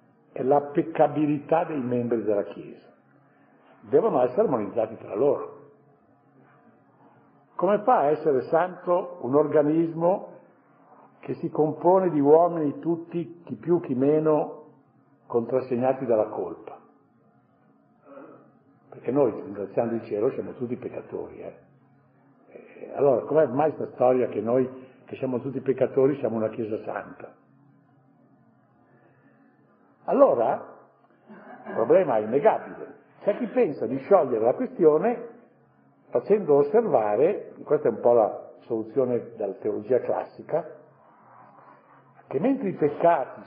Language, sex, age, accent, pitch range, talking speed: Italian, male, 60-79, native, 130-180 Hz, 115 wpm